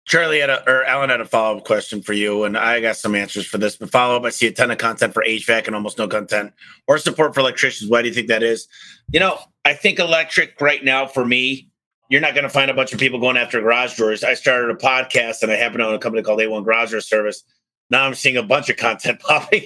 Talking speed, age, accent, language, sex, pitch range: 275 wpm, 30-49, American, English, male, 115-145 Hz